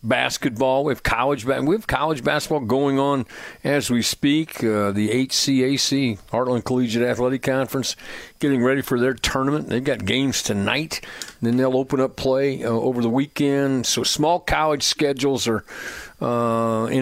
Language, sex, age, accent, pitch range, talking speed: English, male, 50-69, American, 125-150 Hz, 160 wpm